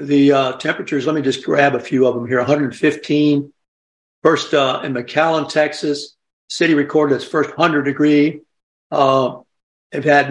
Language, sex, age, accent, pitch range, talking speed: English, male, 60-79, American, 135-160 Hz, 155 wpm